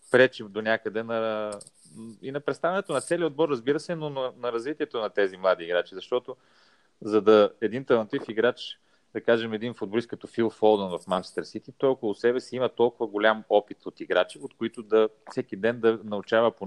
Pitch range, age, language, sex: 105-130 Hz, 30-49, English, male